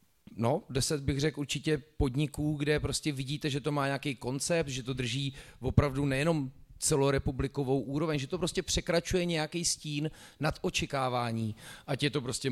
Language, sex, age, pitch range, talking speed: Czech, male, 30-49, 125-150 Hz, 160 wpm